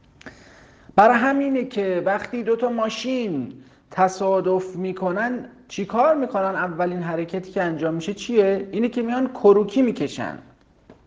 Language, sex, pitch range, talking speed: Persian, male, 125-205 Hz, 115 wpm